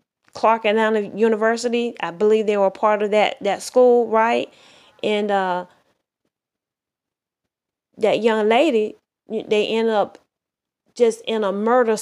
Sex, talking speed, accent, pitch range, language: female, 130 wpm, American, 215-280 Hz, English